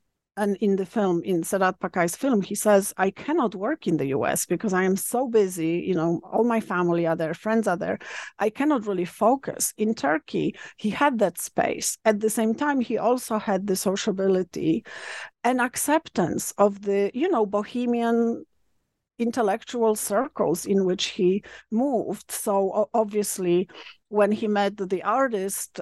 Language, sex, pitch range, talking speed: English, female, 185-220 Hz, 165 wpm